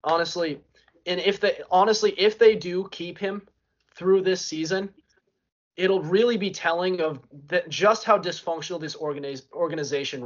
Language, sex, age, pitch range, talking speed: English, male, 20-39, 150-175 Hz, 145 wpm